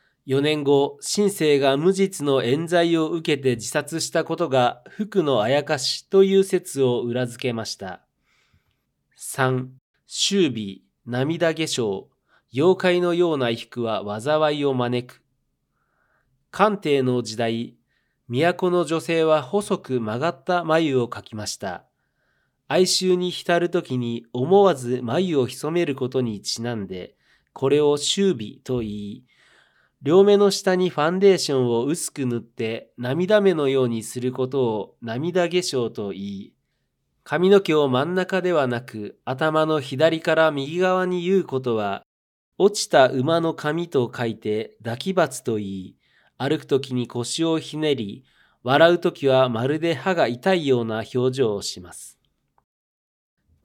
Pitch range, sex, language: 125-175 Hz, male, Japanese